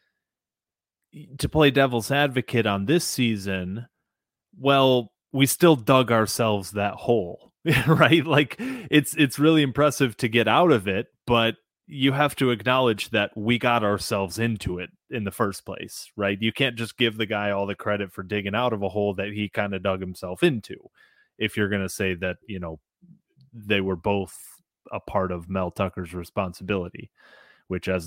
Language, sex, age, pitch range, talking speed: English, male, 30-49, 95-125 Hz, 175 wpm